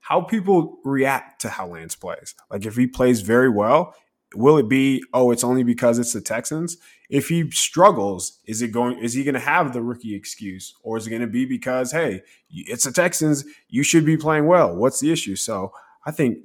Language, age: English, 20-39